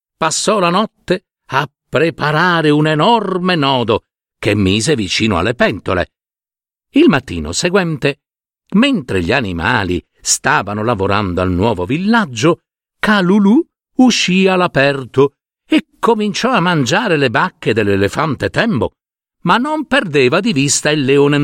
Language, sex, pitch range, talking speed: Italian, male, 130-210 Hz, 120 wpm